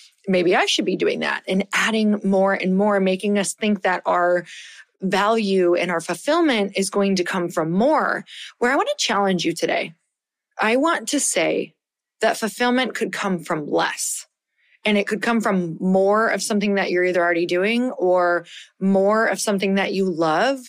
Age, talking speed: 20-39, 185 wpm